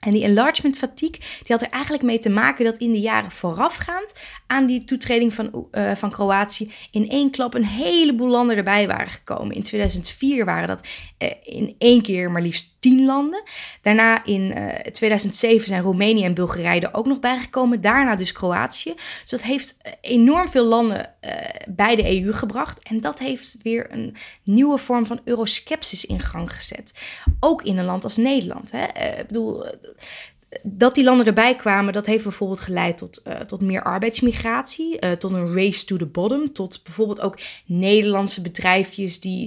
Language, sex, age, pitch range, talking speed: Dutch, female, 20-39, 200-250 Hz, 175 wpm